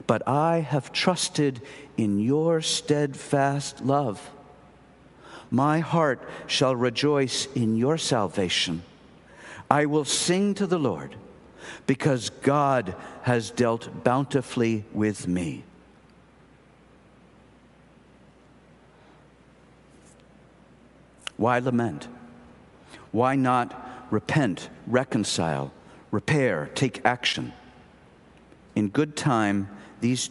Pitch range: 105-140 Hz